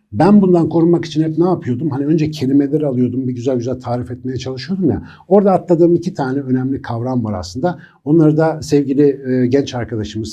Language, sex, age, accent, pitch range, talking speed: Turkish, male, 60-79, native, 110-140 Hz, 180 wpm